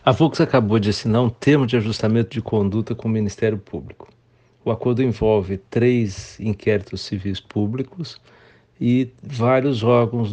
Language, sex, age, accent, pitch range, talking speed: Portuguese, male, 60-79, Brazilian, 100-120 Hz, 145 wpm